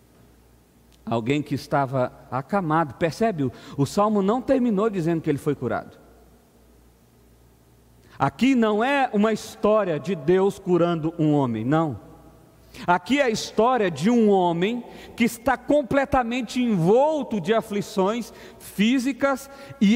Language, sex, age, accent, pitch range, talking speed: Portuguese, male, 50-69, Brazilian, 140-215 Hz, 125 wpm